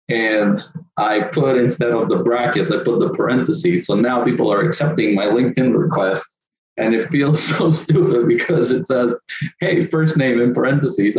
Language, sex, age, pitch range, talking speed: English, male, 20-39, 110-150 Hz, 170 wpm